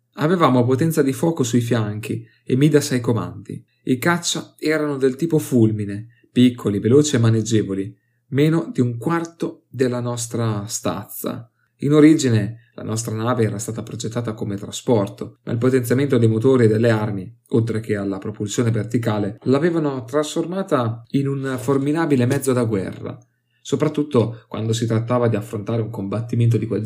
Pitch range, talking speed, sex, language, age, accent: 115-135 Hz, 150 wpm, male, Italian, 30-49, native